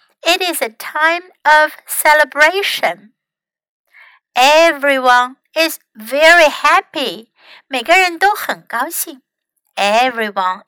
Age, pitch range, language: 60-79, 240-320 Hz, Chinese